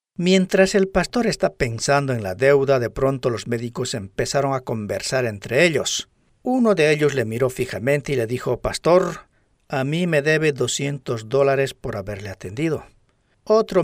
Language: Spanish